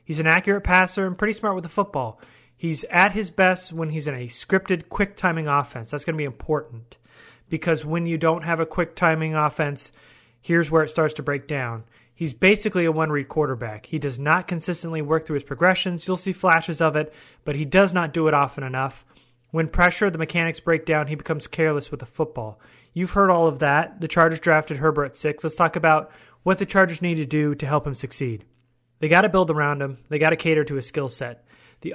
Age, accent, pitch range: 30-49, American, 145-170 Hz